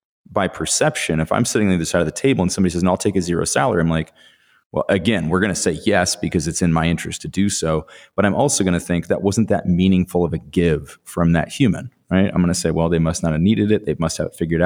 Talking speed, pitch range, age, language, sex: 290 wpm, 85-100 Hz, 30-49, English, male